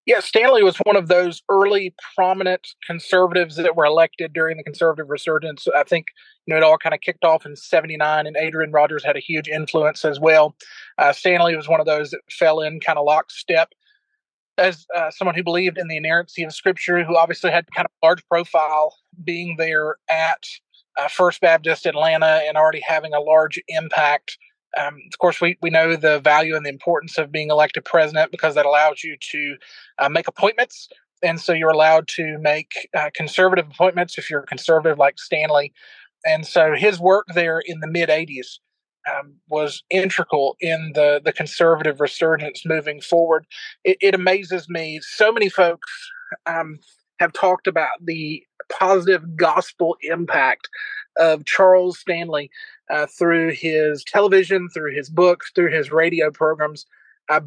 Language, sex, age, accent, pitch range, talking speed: English, male, 30-49, American, 155-180 Hz, 170 wpm